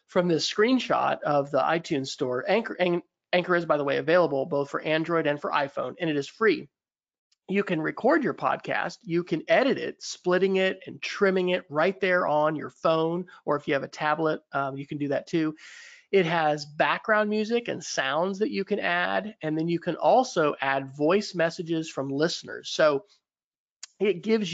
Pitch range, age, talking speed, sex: 155-205 Hz, 40-59, 190 wpm, male